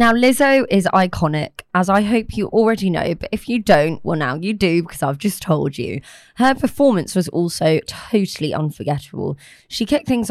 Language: English